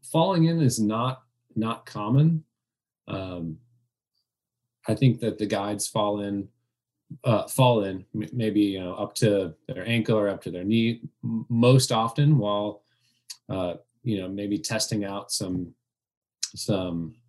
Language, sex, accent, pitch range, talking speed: English, male, American, 100-120 Hz, 140 wpm